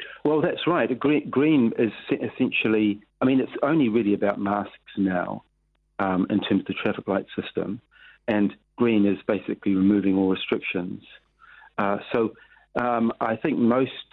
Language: English